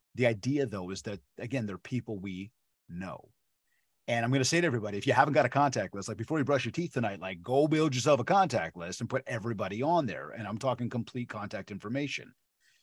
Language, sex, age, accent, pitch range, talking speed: English, male, 30-49, American, 95-135 Hz, 230 wpm